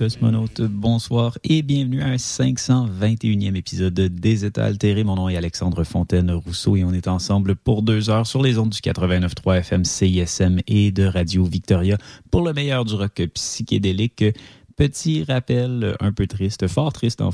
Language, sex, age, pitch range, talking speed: French, male, 30-49, 100-125 Hz, 165 wpm